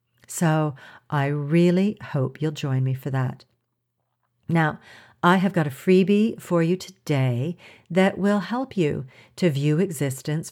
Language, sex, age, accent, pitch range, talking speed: English, female, 50-69, American, 140-190 Hz, 145 wpm